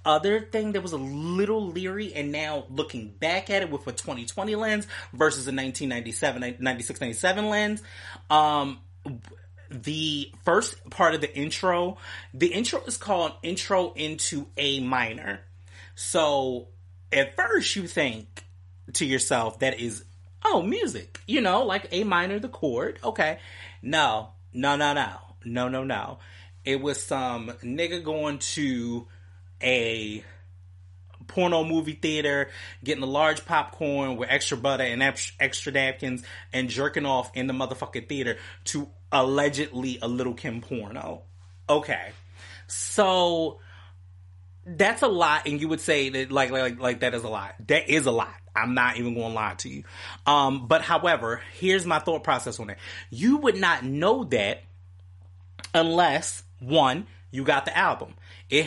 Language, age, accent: English, 30-49, American